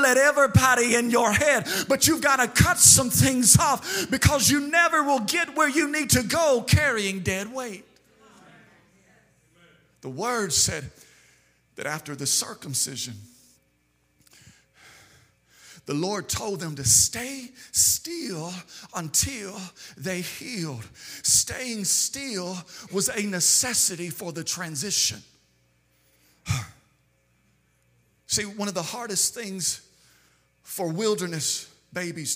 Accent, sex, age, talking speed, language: American, male, 40-59, 110 wpm, English